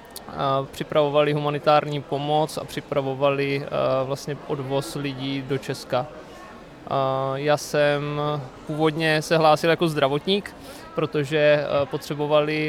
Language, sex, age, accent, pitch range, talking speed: Czech, male, 20-39, native, 145-160 Hz, 85 wpm